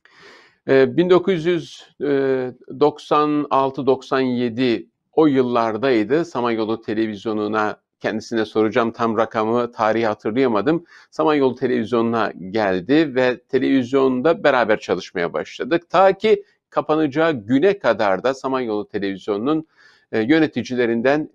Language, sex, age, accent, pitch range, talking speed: Turkish, male, 50-69, native, 115-165 Hz, 80 wpm